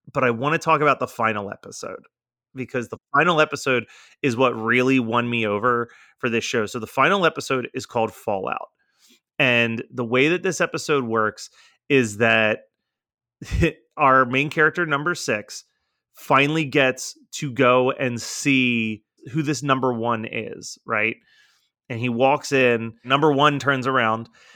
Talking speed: 155 wpm